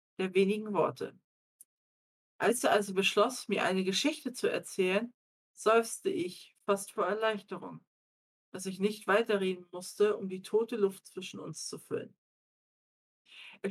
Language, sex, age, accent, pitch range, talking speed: German, female, 50-69, German, 170-215 Hz, 135 wpm